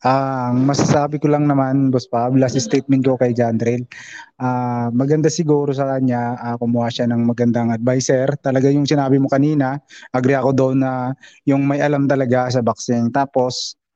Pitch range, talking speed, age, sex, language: 125-145 Hz, 175 wpm, 20-39, male, Filipino